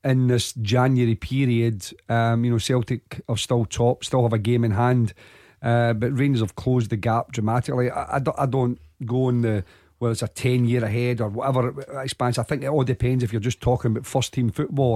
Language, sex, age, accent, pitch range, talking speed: English, male, 40-59, British, 115-130 Hz, 225 wpm